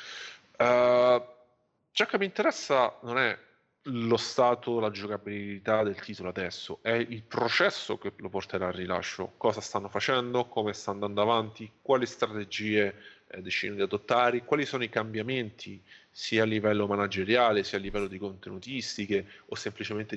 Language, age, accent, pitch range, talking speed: Italian, 30-49, native, 100-120 Hz, 145 wpm